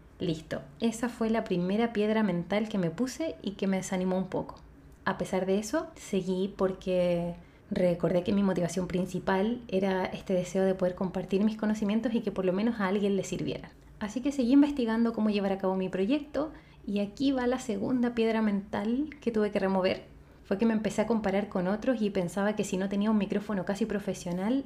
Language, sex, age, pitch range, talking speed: Spanish, female, 20-39, 185-225 Hz, 200 wpm